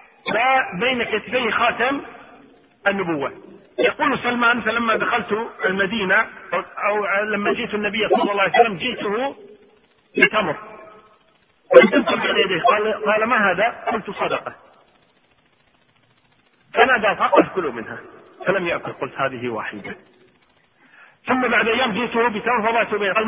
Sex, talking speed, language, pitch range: male, 115 wpm, Arabic, 190-240 Hz